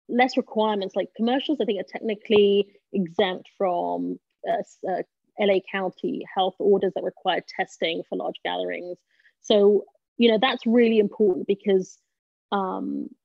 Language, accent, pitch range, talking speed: English, British, 190-220 Hz, 135 wpm